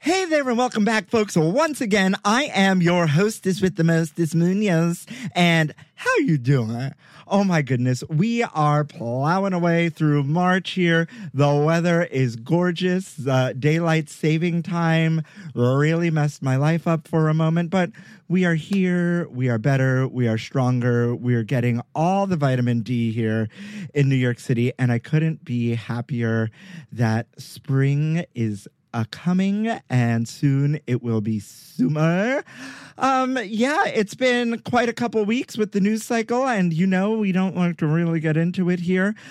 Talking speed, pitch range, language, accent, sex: 165 wpm, 135-190 Hz, English, American, male